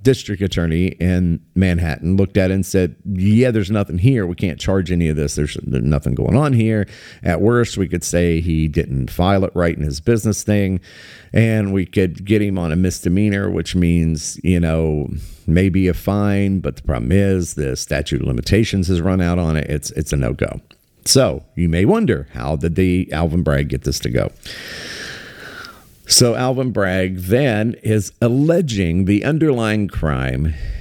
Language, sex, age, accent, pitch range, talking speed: English, male, 50-69, American, 85-115 Hz, 175 wpm